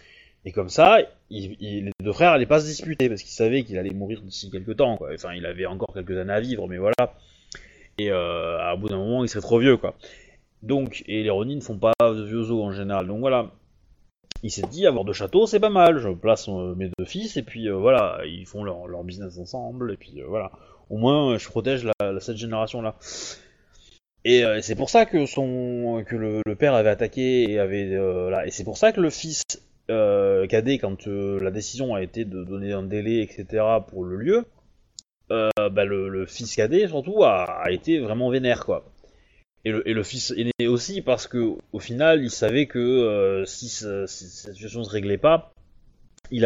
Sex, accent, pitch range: male, French, 100-125 Hz